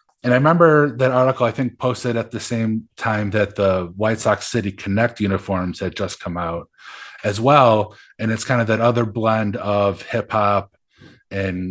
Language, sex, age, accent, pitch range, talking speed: English, male, 20-39, American, 100-120 Hz, 185 wpm